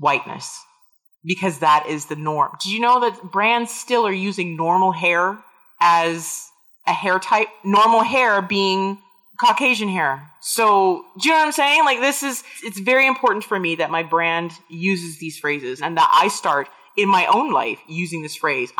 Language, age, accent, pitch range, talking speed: English, 30-49, American, 175-275 Hz, 180 wpm